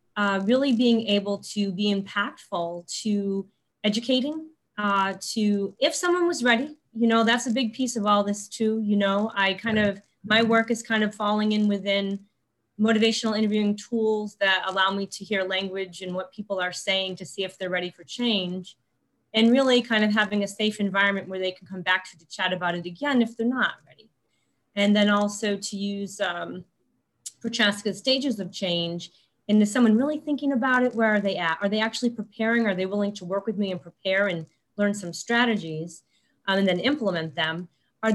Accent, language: American, English